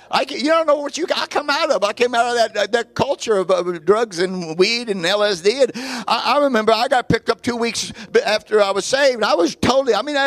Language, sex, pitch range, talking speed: English, male, 190-270 Hz, 265 wpm